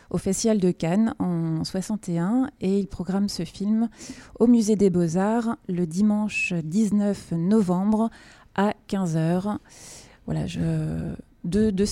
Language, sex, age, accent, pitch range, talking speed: French, female, 30-49, French, 175-220 Hz, 120 wpm